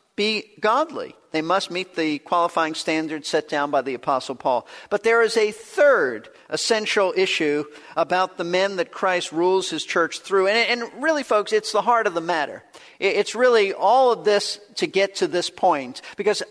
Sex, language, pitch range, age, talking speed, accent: male, English, 175-235 Hz, 50-69, 185 wpm, American